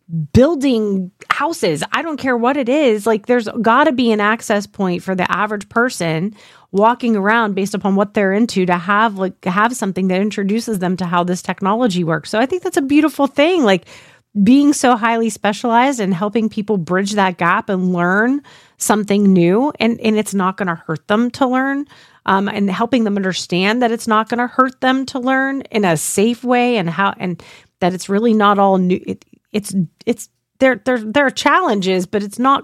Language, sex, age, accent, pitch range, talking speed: English, female, 30-49, American, 190-235 Hz, 200 wpm